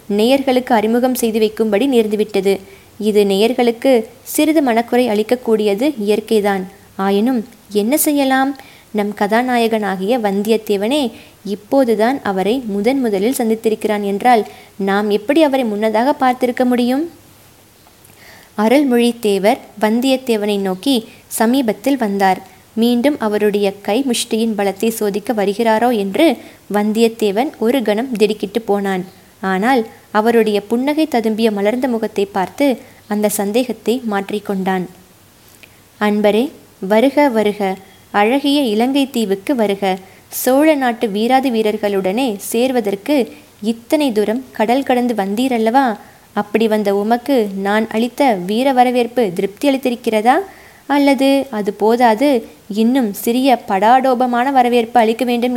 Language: Tamil